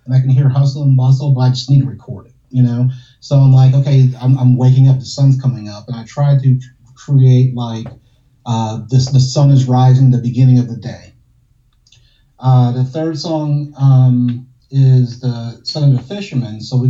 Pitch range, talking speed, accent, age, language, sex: 125-135 Hz, 205 wpm, American, 30-49, English, male